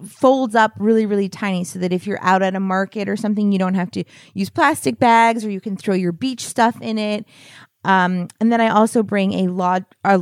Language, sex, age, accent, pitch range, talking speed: English, female, 20-39, American, 185-235 Hz, 230 wpm